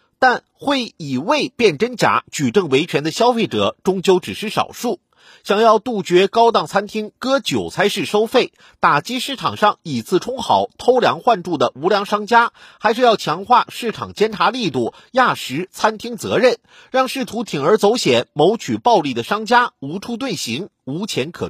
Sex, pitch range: male, 185-250 Hz